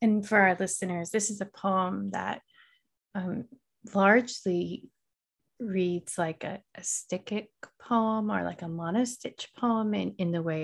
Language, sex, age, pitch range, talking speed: English, female, 30-49, 165-200 Hz, 145 wpm